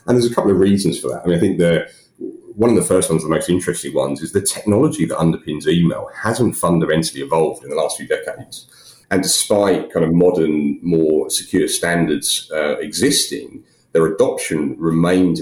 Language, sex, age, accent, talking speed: English, male, 40-59, British, 190 wpm